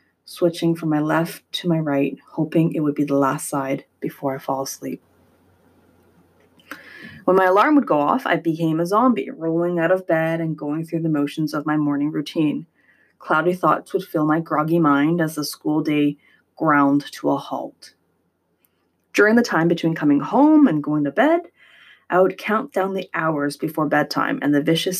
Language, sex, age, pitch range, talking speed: English, female, 20-39, 145-180 Hz, 185 wpm